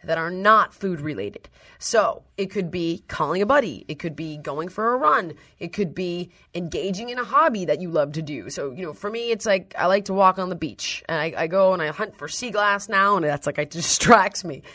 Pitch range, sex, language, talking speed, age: 160-215 Hz, female, English, 250 wpm, 30-49